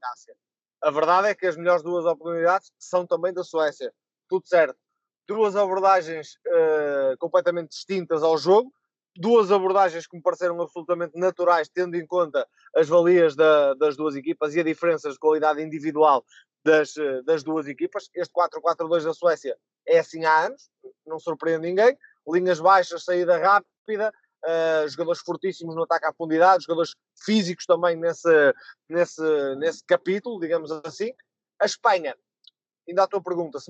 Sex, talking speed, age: male, 150 wpm, 20-39